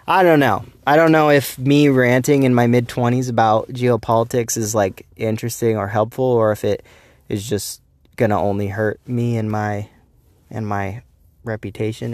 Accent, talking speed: American, 175 wpm